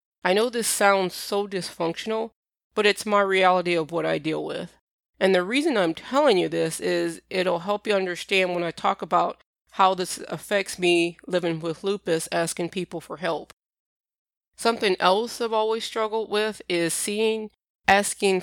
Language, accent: English, American